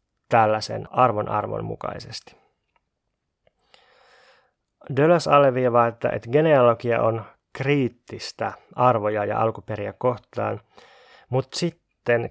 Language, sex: Finnish, male